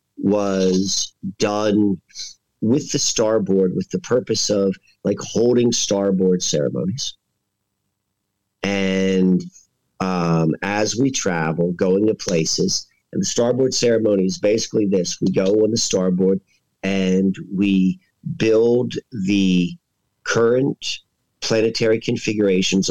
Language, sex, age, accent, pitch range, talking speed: English, male, 50-69, American, 95-110 Hz, 105 wpm